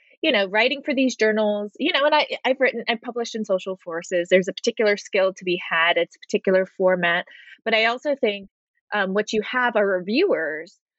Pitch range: 195-255 Hz